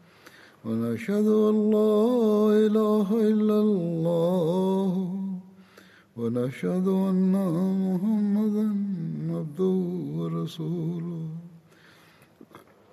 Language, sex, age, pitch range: Malayalam, male, 50-69, 165-210 Hz